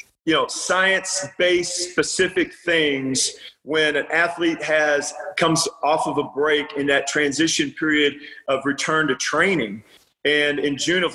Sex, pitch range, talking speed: male, 135-155 Hz, 140 wpm